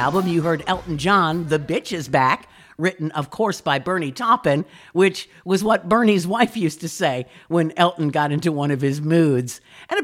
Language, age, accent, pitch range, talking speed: English, 50-69, American, 155-195 Hz, 195 wpm